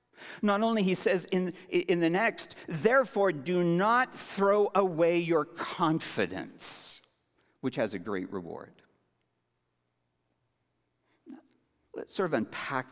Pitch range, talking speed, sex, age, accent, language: 115-180 Hz, 110 wpm, male, 60-79, American, English